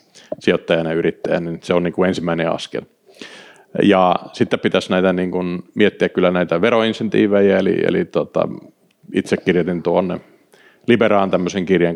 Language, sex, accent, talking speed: Finnish, male, native, 140 wpm